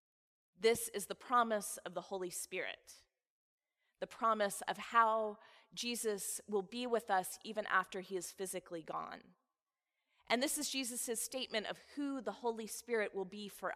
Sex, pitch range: female, 195-240 Hz